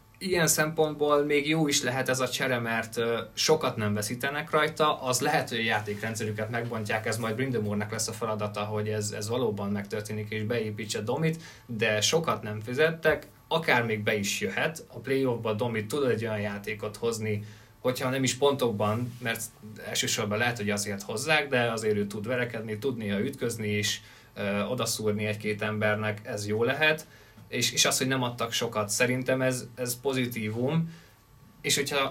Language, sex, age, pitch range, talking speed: Hungarian, male, 20-39, 105-125 Hz, 165 wpm